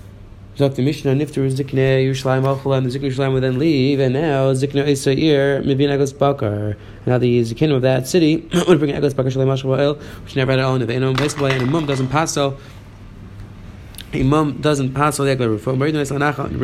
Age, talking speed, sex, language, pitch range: 20-39, 65 wpm, male, English, 120-145 Hz